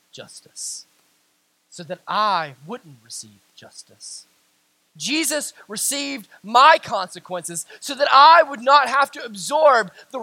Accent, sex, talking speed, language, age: American, male, 115 wpm, English, 20-39